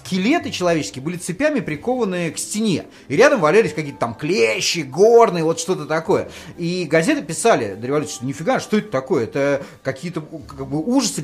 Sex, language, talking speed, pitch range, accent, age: male, Russian, 170 wpm, 150-220 Hz, native, 30-49